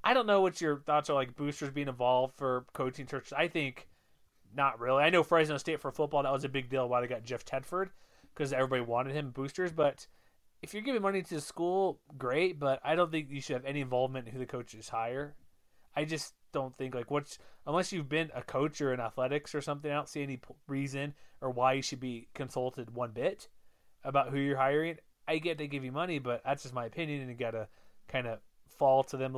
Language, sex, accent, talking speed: English, male, American, 235 wpm